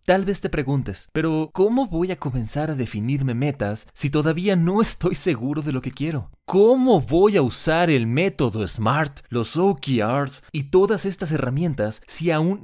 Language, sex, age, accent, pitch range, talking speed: Spanish, male, 30-49, Mexican, 115-160 Hz, 170 wpm